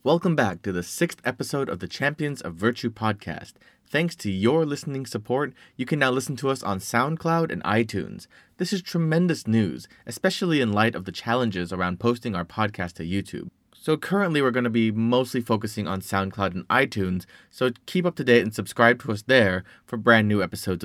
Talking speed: 200 wpm